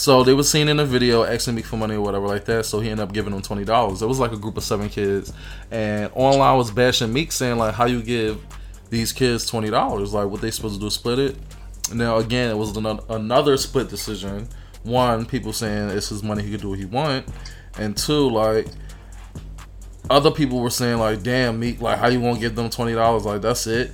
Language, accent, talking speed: English, American, 225 wpm